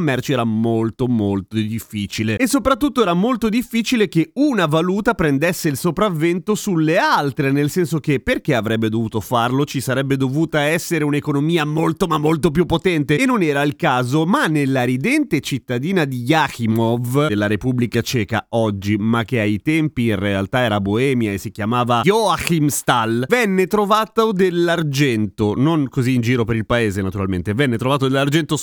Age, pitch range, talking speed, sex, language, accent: 30-49, 125-180 Hz, 160 wpm, male, Italian, native